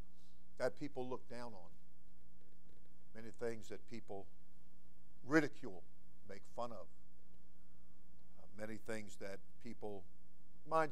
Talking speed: 105 wpm